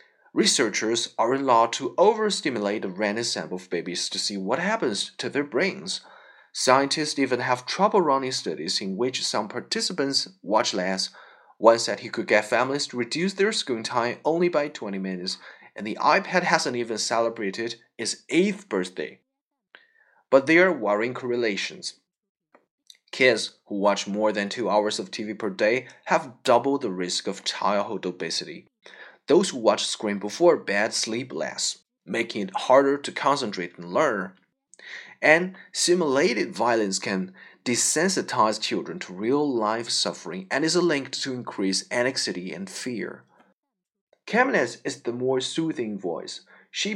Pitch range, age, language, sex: 105-160 Hz, 30-49, Chinese, male